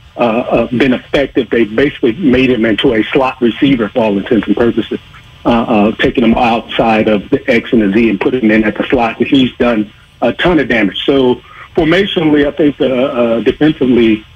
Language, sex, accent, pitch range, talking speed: English, male, American, 115-135 Hz, 200 wpm